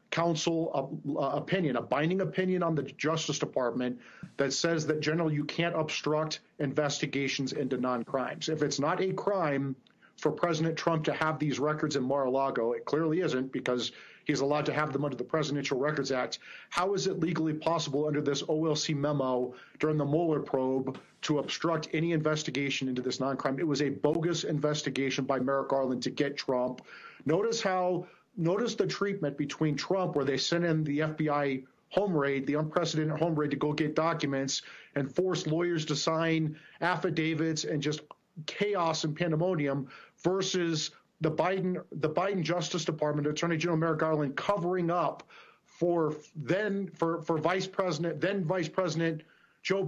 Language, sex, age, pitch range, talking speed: English, male, 40-59, 140-170 Hz, 160 wpm